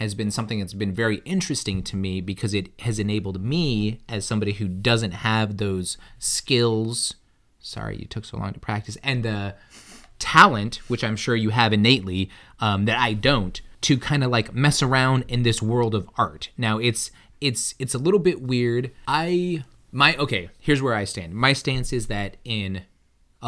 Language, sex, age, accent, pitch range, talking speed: English, male, 20-39, American, 105-125 Hz, 185 wpm